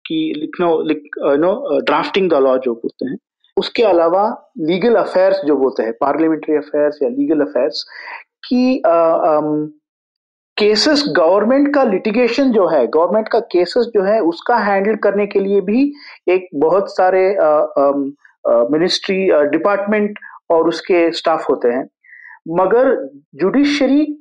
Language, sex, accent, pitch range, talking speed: Hindi, male, native, 175-255 Hz, 130 wpm